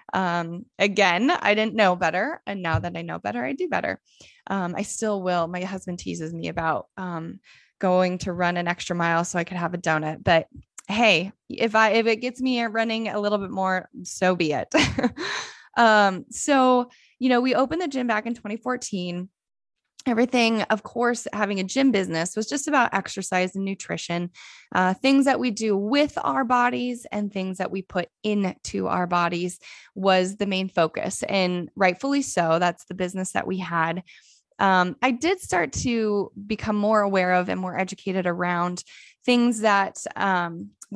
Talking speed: 180 wpm